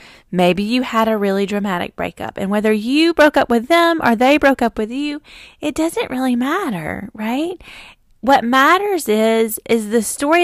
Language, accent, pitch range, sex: English, American, 215-300 Hz, female